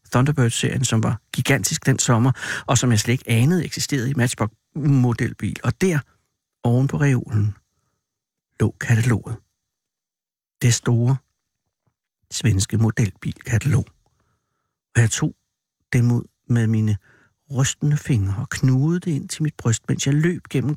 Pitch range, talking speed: 120-145 Hz, 135 wpm